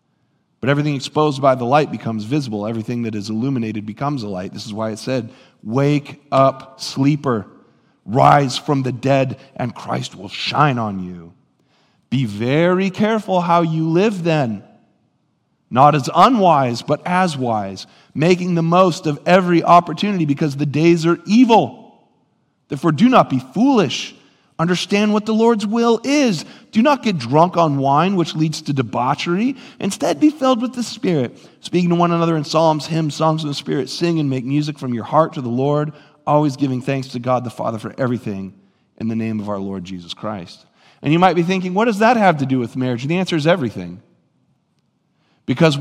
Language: English